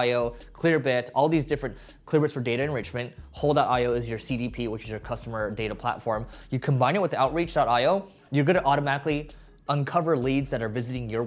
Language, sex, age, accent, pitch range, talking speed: English, male, 20-39, American, 125-155 Hz, 180 wpm